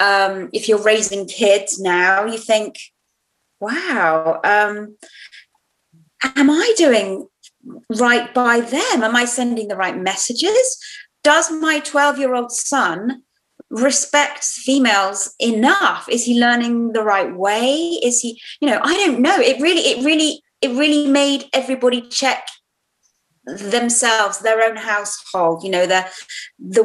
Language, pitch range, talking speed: English, 195-275 Hz, 135 wpm